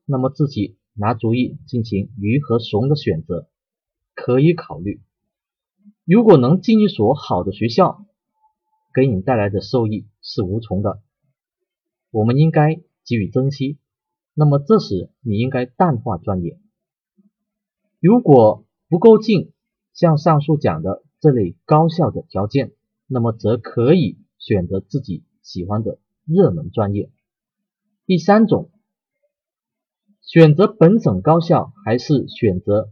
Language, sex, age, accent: Chinese, male, 30-49, native